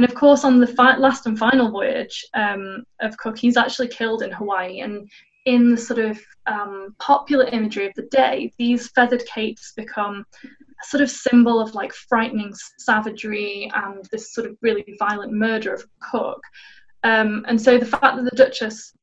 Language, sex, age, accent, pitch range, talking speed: English, female, 10-29, British, 215-255 Hz, 185 wpm